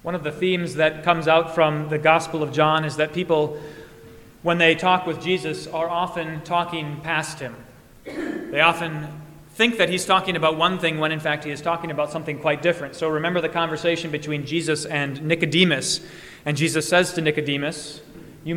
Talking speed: 185 wpm